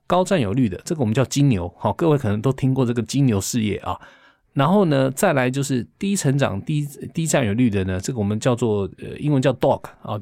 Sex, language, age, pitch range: male, Chinese, 20-39, 110-155 Hz